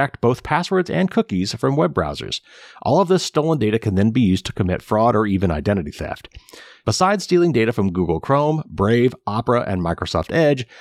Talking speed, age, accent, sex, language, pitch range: 190 wpm, 30-49, American, male, English, 90-125 Hz